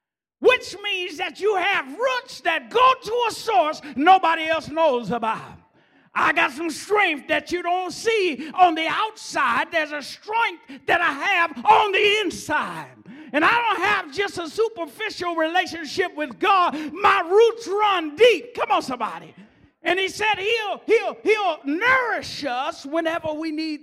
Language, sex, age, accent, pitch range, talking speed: English, male, 40-59, American, 275-370 Hz, 160 wpm